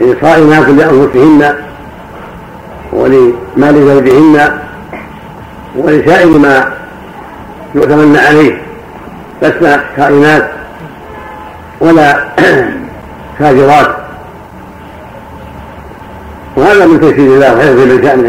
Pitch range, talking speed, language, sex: 130-155 Hz, 60 wpm, Arabic, male